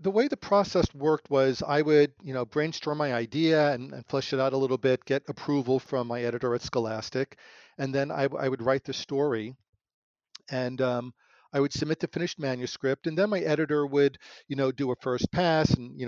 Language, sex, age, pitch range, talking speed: English, male, 40-59, 120-150 Hz, 215 wpm